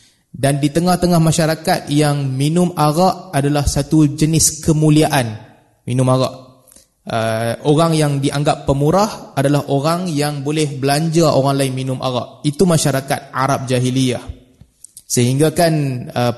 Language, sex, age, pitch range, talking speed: Malay, male, 20-39, 130-165 Hz, 125 wpm